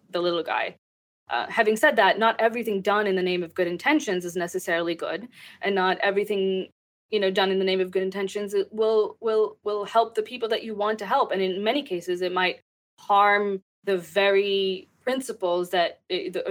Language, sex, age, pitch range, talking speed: English, female, 20-39, 180-215 Hz, 200 wpm